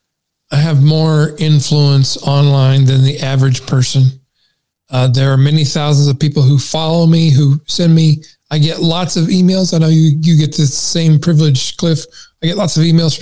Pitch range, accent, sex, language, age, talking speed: 140-180 Hz, American, male, English, 40-59, 190 wpm